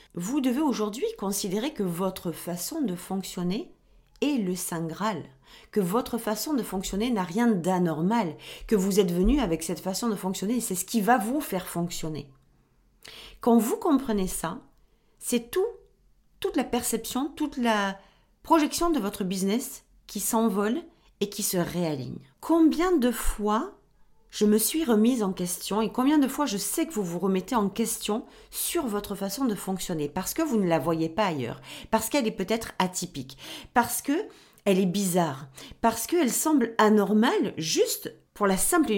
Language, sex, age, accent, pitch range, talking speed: French, female, 40-59, French, 190-255 Hz, 170 wpm